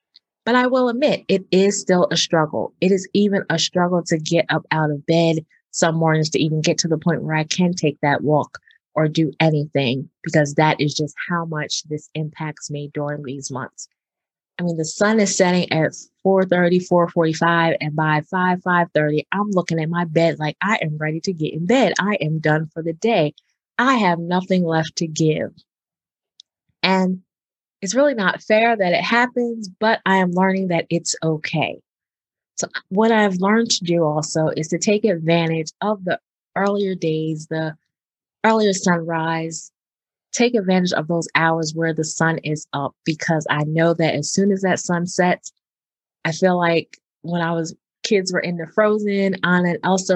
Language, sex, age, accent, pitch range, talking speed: English, female, 20-39, American, 160-190 Hz, 180 wpm